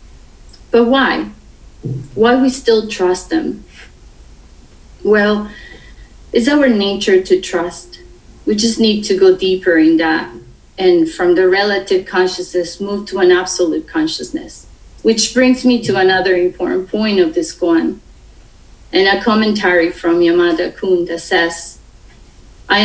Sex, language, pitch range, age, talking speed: female, English, 180-235 Hz, 30-49, 130 wpm